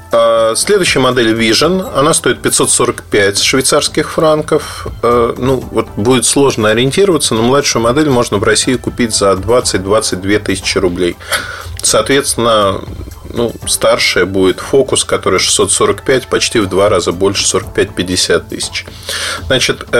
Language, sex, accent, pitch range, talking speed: Russian, male, native, 105-140 Hz, 115 wpm